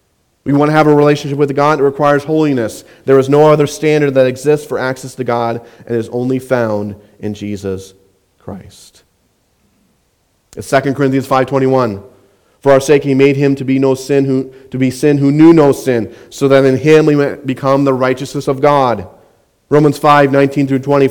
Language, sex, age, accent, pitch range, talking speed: English, male, 40-59, American, 115-140 Hz, 180 wpm